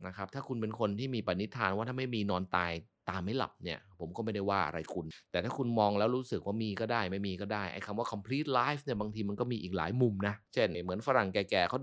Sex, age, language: male, 30-49, Thai